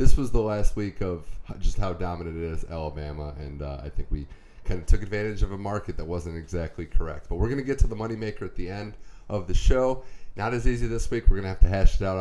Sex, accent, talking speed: male, American, 270 wpm